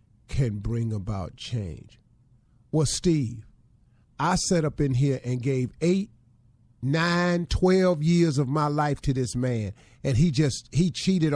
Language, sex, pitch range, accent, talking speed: English, male, 115-150 Hz, American, 150 wpm